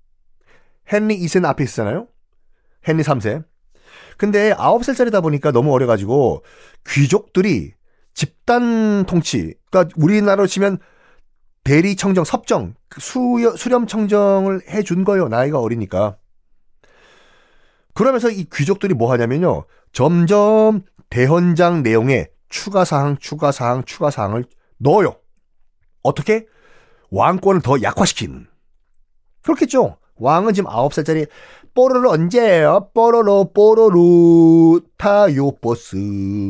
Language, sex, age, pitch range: Korean, male, 40-59, 130-205 Hz